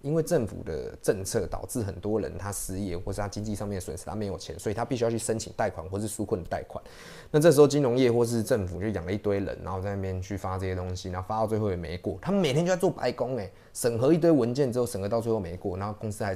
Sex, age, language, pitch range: male, 20-39, Chinese, 95-120 Hz